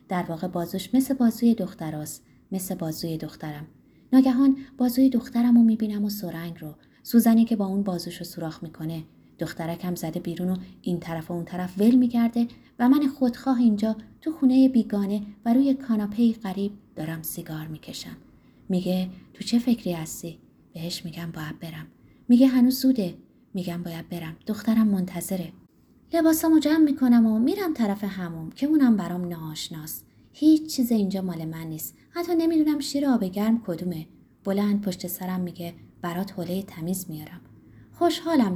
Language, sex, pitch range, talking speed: Persian, female, 170-235 Hz, 150 wpm